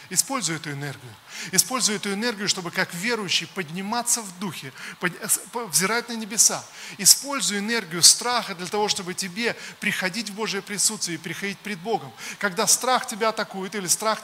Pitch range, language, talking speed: 195-235 Hz, Russian, 150 wpm